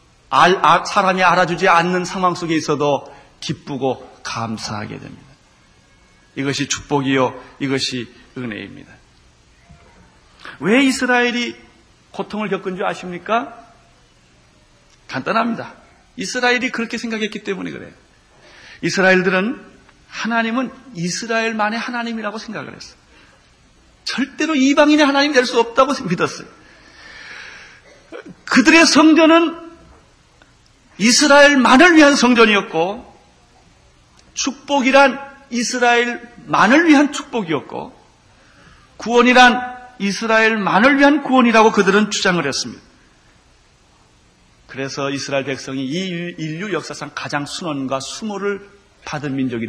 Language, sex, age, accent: Korean, male, 40-59, native